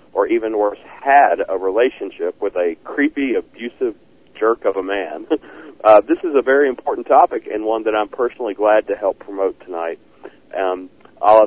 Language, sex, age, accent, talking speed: English, male, 40-59, American, 175 wpm